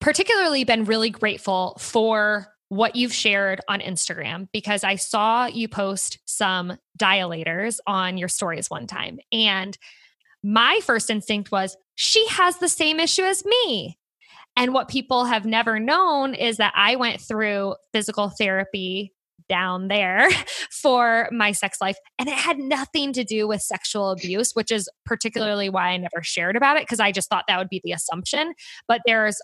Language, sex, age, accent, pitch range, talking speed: English, female, 20-39, American, 195-260 Hz, 165 wpm